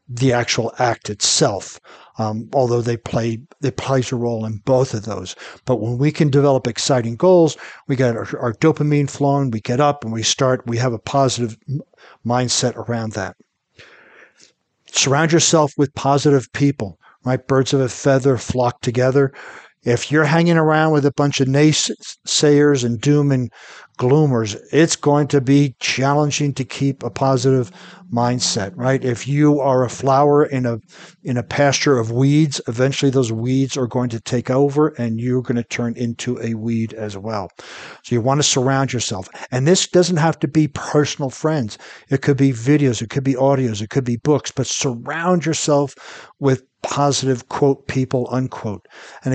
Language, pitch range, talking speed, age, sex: English, 120-145 Hz, 175 wpm, 60-79, male